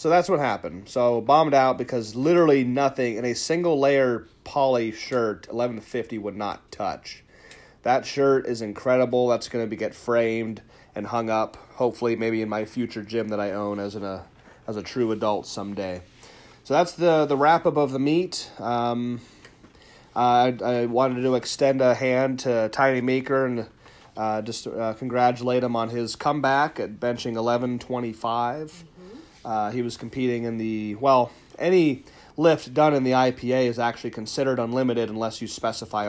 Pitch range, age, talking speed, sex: 110-130 Hz, 30-49, 175 wpm, male